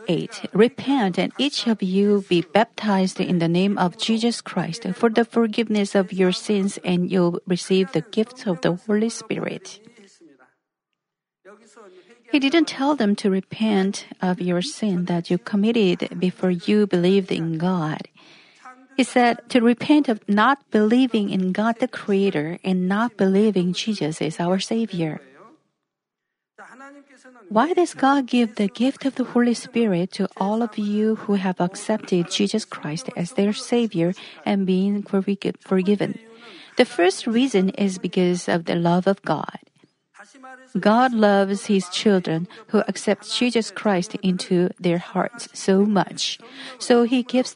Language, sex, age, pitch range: Korean, female, 50-69, 185-235 Hz